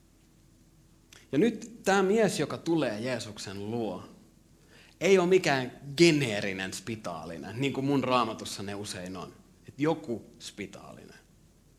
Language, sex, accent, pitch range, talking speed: Finnish, male, native, 100-155 Hz, 110 wpm